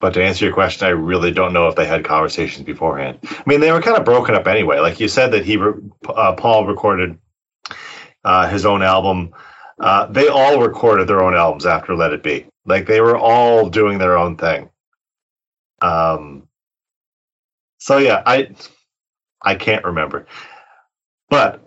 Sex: male